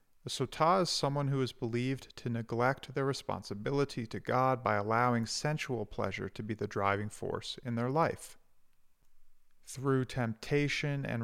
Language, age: English, 40-59